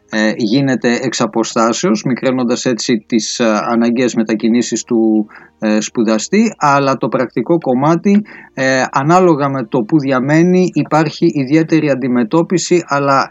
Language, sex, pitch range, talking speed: Greek, male, 125-160 Hz, 100 wpm